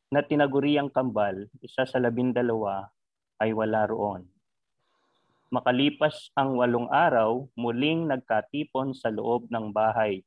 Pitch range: 110-135 Hz